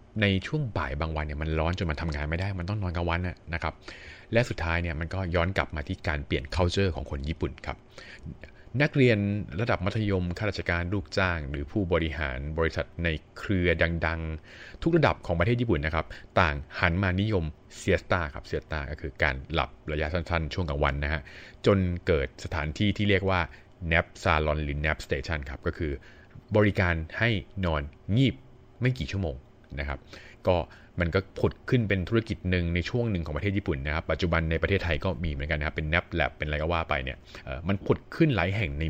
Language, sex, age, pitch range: Thai, male, 30-49, 80-100 Hz